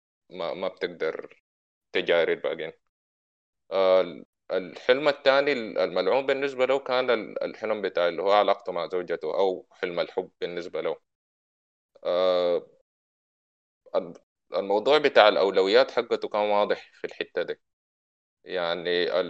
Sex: male